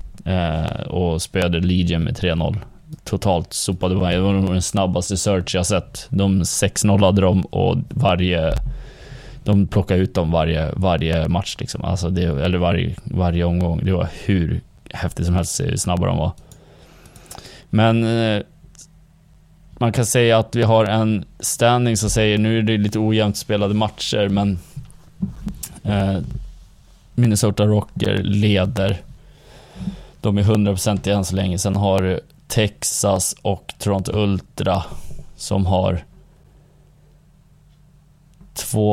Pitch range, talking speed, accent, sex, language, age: 90-115 Hz, 130 wpm, native, male, Swedish, 20-39